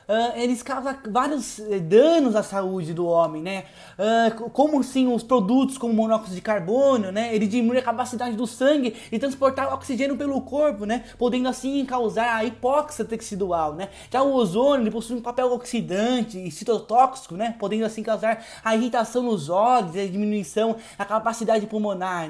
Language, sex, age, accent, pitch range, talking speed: Portuguese, male, 20-39, Brazilian, 210-255 Hz, 170 wpm